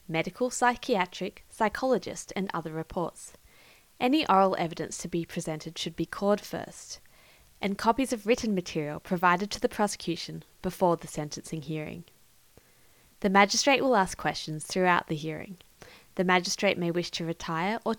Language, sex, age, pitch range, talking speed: English, female, 20-39, 165-220 Hz, 145 wpm